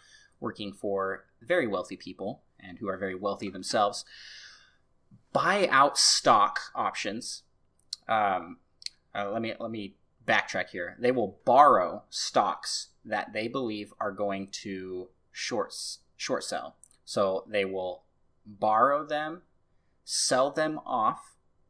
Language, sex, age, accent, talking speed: English, male, 20-39, American, 120 wpm